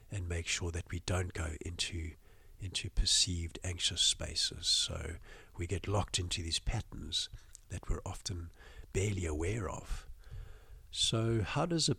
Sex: male